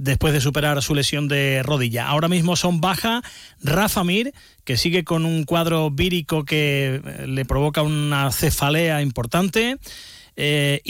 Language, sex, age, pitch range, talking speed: Spanish, male, 30-49, 145-175 Hz, 145 wpm